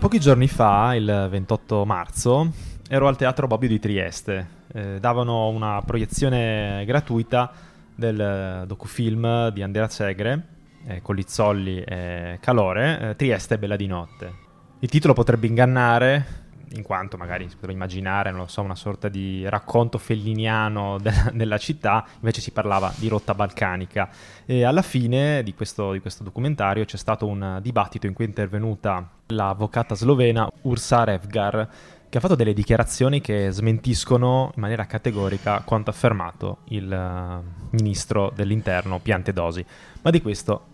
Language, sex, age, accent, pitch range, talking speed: Italian, male, 20-39, native, 95-120 Hz, 145 wpm